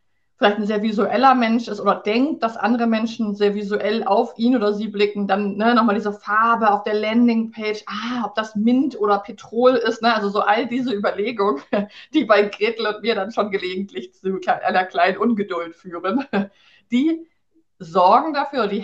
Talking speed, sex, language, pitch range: 170 wpm, female, German, 205-245 Hz